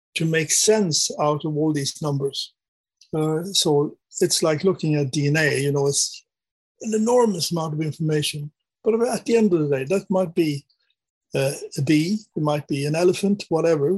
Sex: male